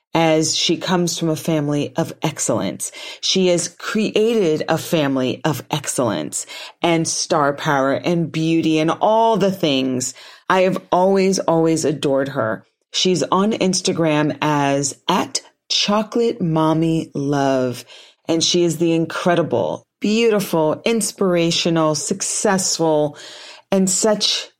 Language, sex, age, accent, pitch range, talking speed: English, female, 40-59, American, 150-190 Hz, 115 wpm